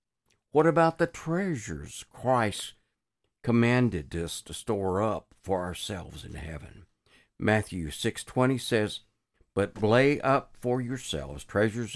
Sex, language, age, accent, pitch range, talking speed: male, English, 60-79, American, 90-125 Hz, 115 wpm